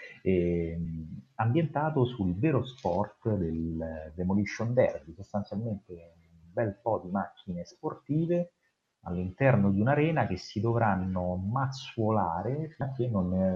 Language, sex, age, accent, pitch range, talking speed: Italian, male, 30-49, native, 85-115 Hz, 105 wpm